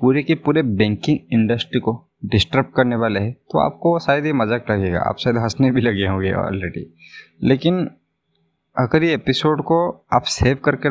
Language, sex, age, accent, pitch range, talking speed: Hindi, male, 20-39, native, 110-145 Hz, 170 wpm